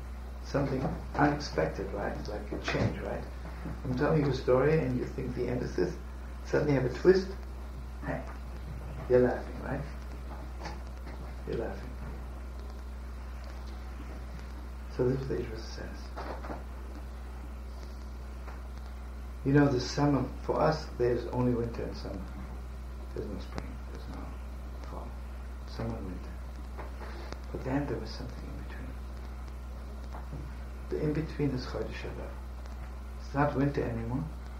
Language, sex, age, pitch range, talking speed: English, male, 60-79, 65-70 Hz, 120 wpm